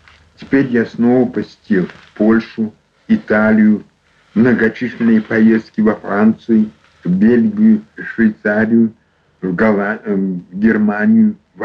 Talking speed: 100 wpm